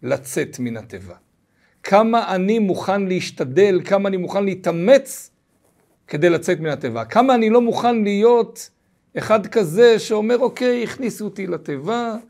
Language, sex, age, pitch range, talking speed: Hebrew, male, 50-69, 145-225 Hz, 130 wpm